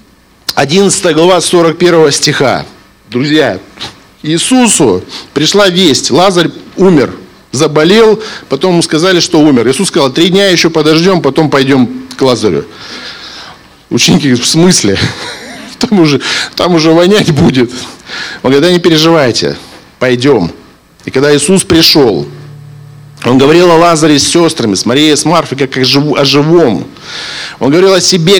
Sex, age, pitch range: male, 50-69, 150-195 Hz